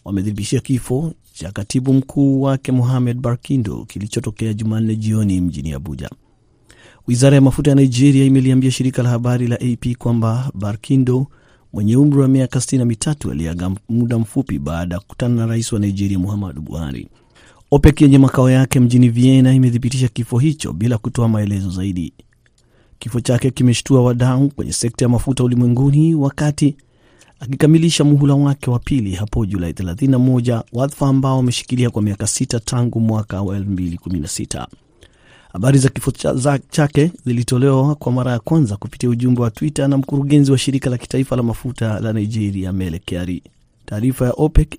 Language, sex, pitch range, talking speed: Swahili, male, 110-135 Hz, 145 wpm